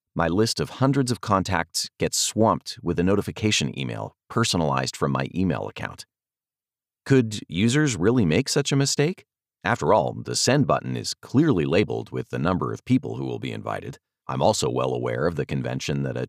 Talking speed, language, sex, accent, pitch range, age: 185 wpm, English, male, American, 85-125 Hz, 40-59